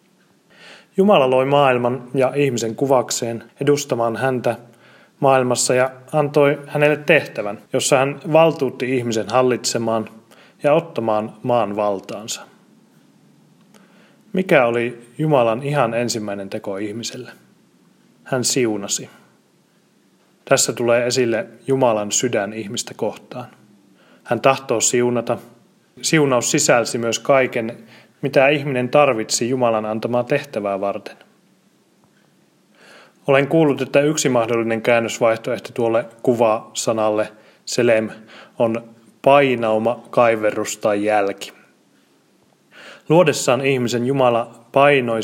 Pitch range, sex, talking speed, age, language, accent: 115-135 Hz, male, 95 wpm, 30-49, Finnish, native